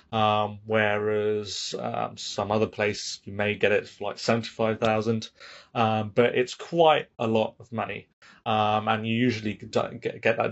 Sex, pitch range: male, 105-120 Hz